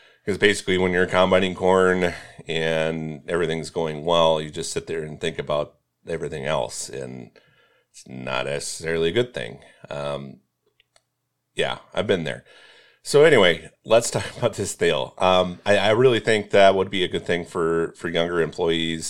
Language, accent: English, American